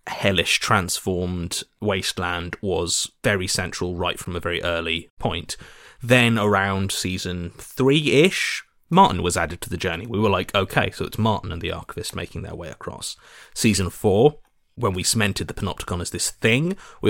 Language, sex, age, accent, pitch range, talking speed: English, male, 30-49, British, 90-110 Hz, 170 wpm